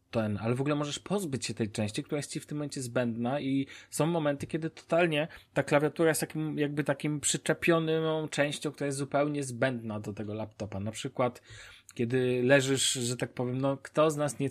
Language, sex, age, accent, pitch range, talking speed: Polish, male, 20-39, native, 115-140 Hz, 200 wpm